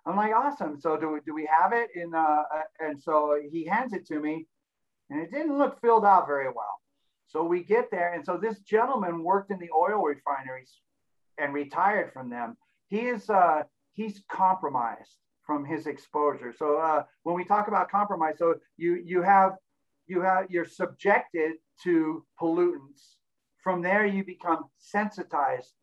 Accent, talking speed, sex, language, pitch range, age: American, 170 wpm, male, English, 150-195 Hz, 50-69